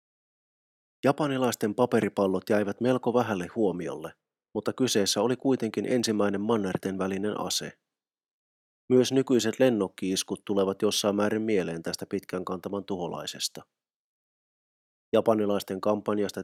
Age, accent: 30-49, native